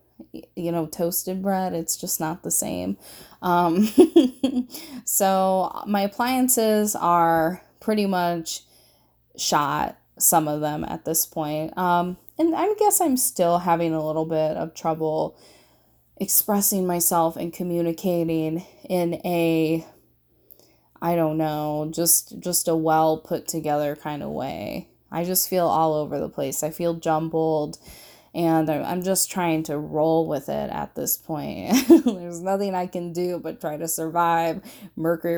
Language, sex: English, female